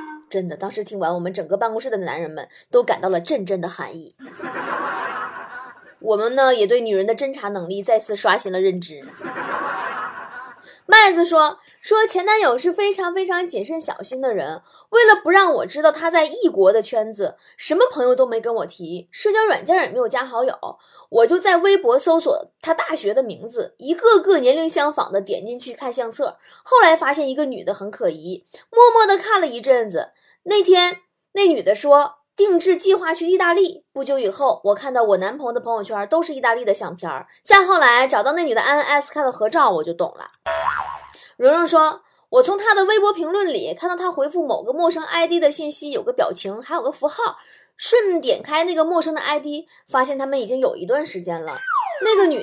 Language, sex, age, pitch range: Chinese, female, 20-39, 235-385 Hz